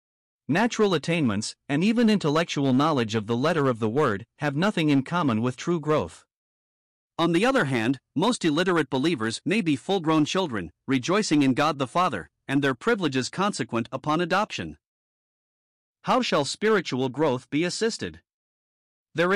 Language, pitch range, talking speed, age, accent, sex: English, 130-175 Hz, 150 wpm, 50-69, American, male